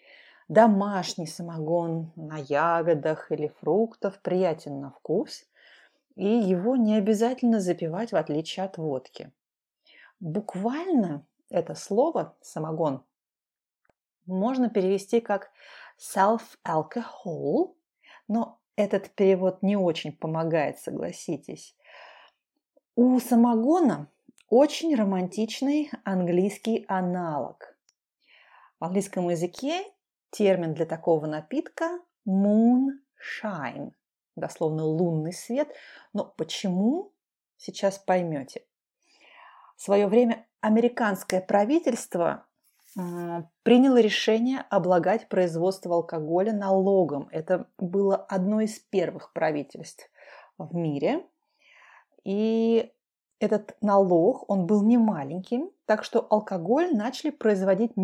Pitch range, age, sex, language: 175-235 Hz, 30-49, female, Russian